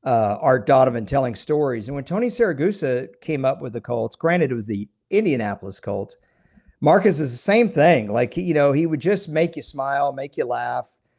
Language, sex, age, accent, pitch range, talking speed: English, male, 50-69, American, 120-165 Hz, 205 wpm